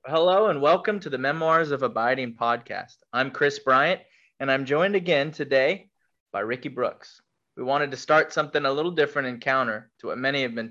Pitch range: 120-150 Hz